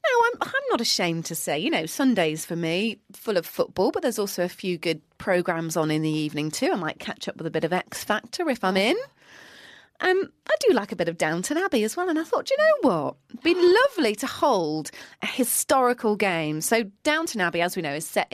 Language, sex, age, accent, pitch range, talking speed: English, female, 30-49, British, 170-275 Hz, 240 wpm